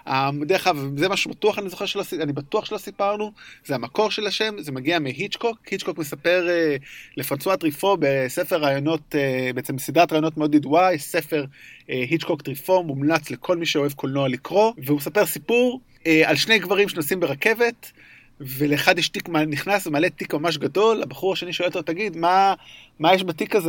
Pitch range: 145-190 Hz